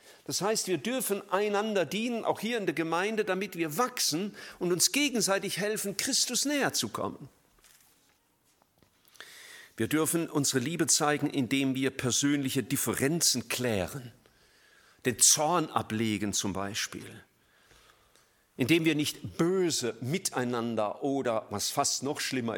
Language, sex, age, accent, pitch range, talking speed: German, male, 50-69, German, 125-180 Hz, 125 wpm